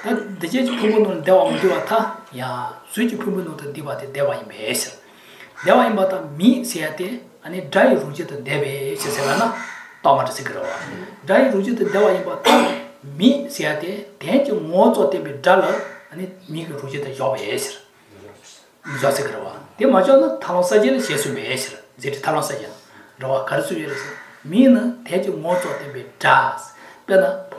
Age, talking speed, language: 60-79, 70 wpm, English